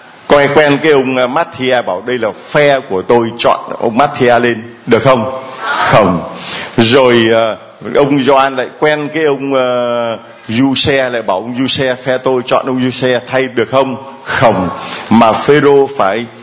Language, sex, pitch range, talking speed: Vietnamese, male, 120-140 Hz, 155 wpm